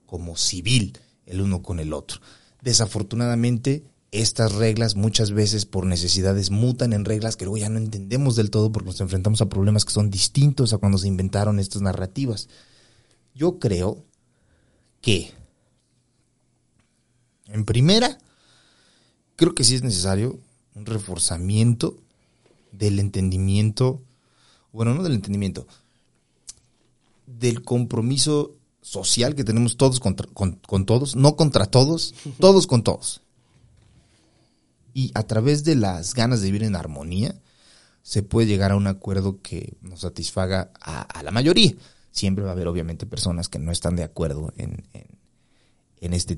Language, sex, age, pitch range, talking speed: Spanish, male, 30-49, 95-120 Hz, 140 wpm